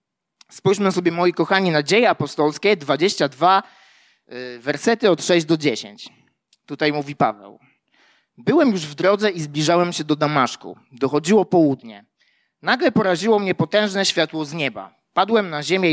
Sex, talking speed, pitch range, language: male, 145 wpm, 145-185 Hz, Polish